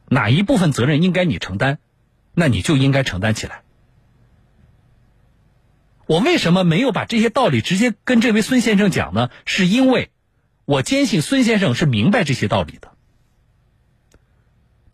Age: 50-69